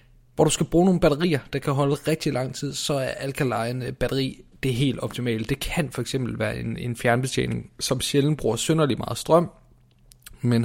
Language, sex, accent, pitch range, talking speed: Danish, male, native, 115-145 Hz, 185 wpm